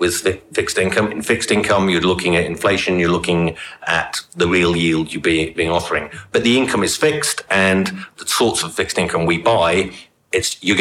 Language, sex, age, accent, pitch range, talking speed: English, male, 50-69, British, 85-105 Hz, 185 wpm